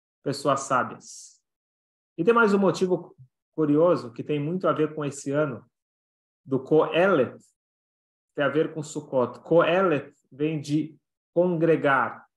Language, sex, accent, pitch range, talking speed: Portuguese, male, Brazilian, 130-160 Hz, 130 wpm